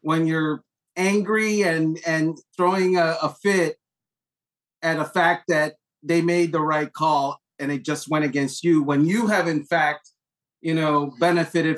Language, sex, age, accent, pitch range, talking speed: English, male, 40-59, American, 155-185 Hz, 165 wpm